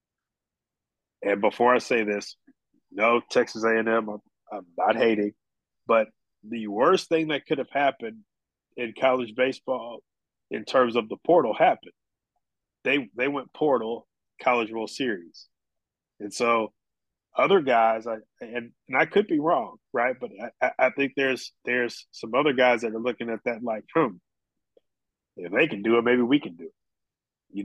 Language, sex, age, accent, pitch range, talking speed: English, male, 30-49, American, 110-130 Hz, 165 wpm